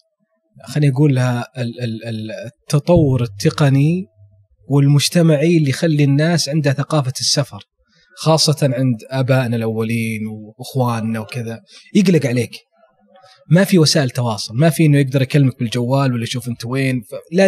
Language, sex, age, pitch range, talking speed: Arabic, male, 20-39, 125-175 Hz, 120 wpm